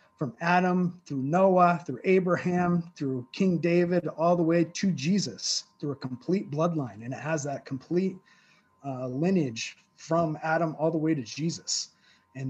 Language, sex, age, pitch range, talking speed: English, male, 30-49, 135-175 Hz, 160 wpm